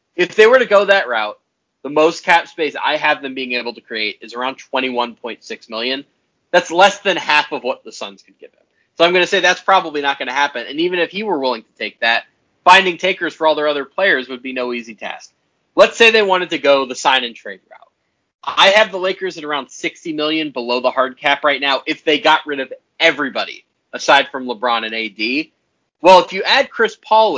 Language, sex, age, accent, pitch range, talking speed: English, male, 30-49, American, 125-190 Hz, 235 wpm